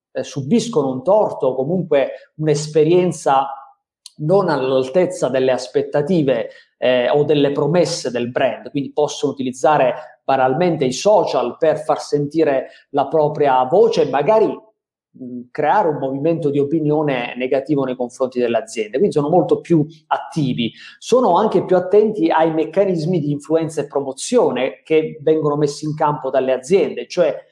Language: Italian